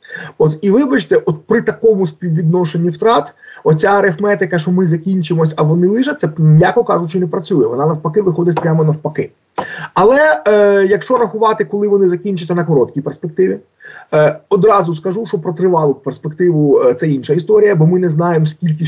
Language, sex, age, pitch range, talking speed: Ukrainian, male, 30-49, 155-205 Hz, 160 wpm